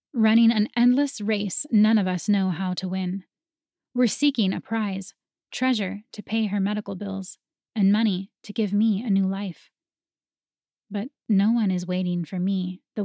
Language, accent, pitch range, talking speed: English, American, 190-230 Hz, 170 wpm